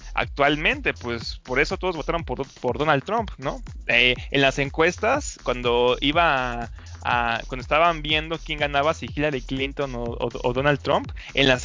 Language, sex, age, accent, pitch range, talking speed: Spanish, male, 20-39, Mexican, 135-195 Hz, 175 wpm